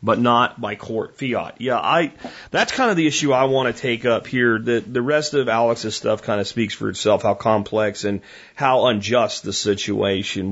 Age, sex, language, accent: 30-49, male, English, American